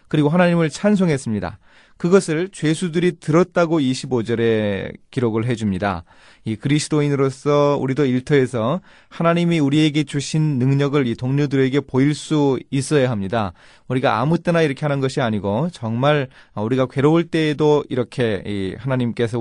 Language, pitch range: Korean, 115-160 Hz